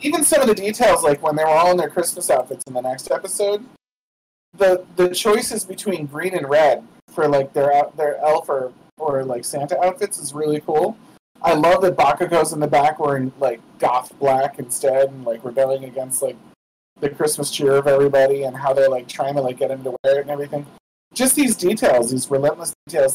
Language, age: English, 30-49